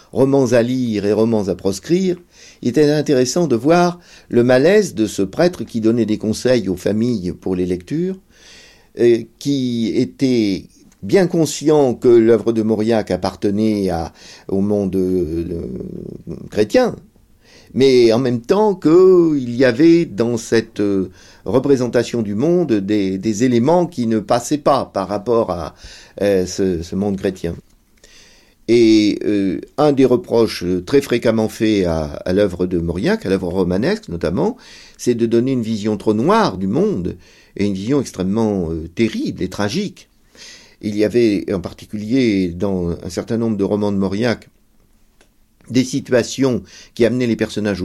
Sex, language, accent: male, French, French